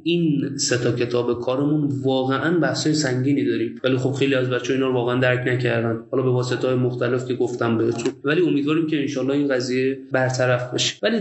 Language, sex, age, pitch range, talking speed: Persian, male, 20-39, 120-145 Hz, 175 wpm